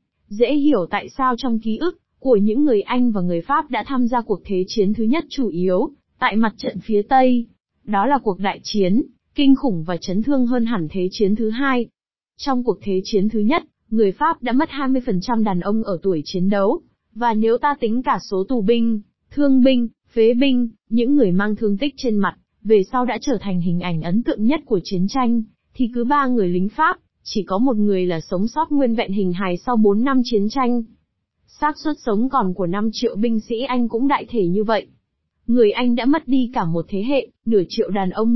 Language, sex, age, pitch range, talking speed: Vietnamese, female, 20-39, 205-255 Hz, 225 wpm